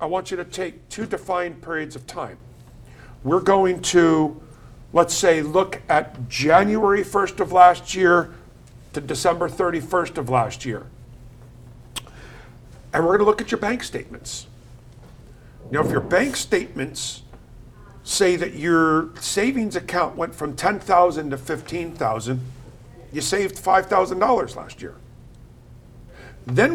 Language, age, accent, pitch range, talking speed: English, 50-69, American, 135-185 Hz, 130 wpm